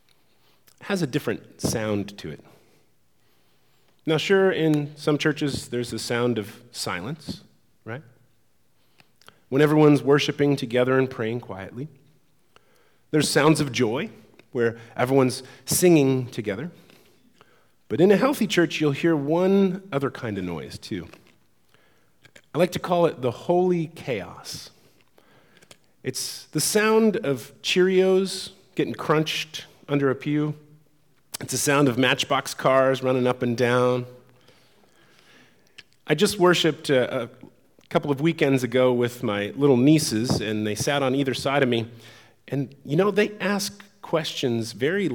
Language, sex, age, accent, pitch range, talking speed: English, male, 30-49, American, 120-155 Hz, 135 wpm